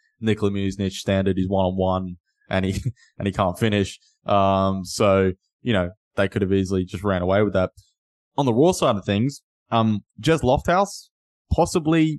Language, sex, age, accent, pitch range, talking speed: English, male, 20-39, Australian, 95-115 Hz, 165 wpm